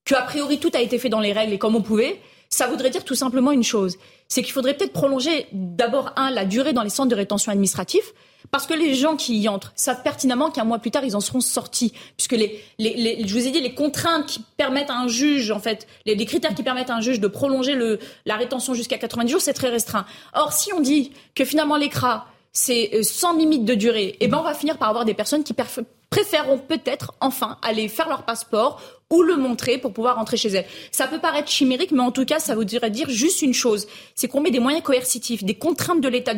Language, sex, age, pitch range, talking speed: French, female, 30-49, 220-275 Hz, 250 wpm